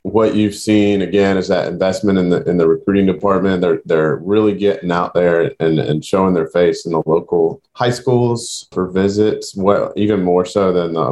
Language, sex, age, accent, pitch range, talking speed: English, male, 30-49, American, 85-105 Hz, 200 wpm